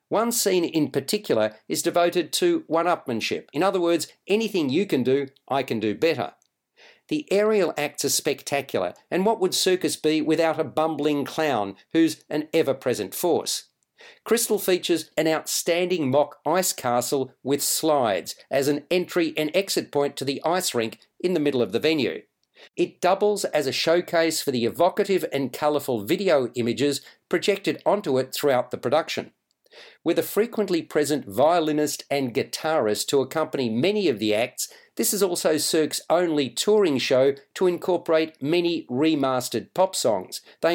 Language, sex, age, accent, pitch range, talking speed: English, male, 50-69, Australian, 145-180 Hz, 160 wpm